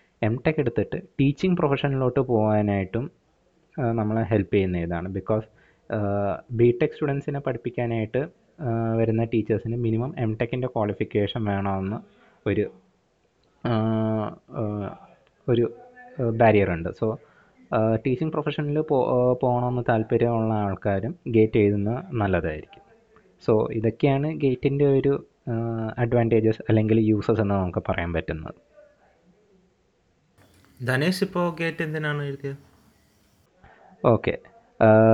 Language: Malayalam